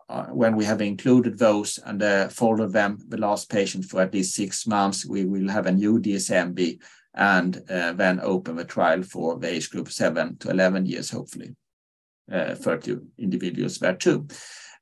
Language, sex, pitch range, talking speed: English, male, 95-115 Hz, 180 wpm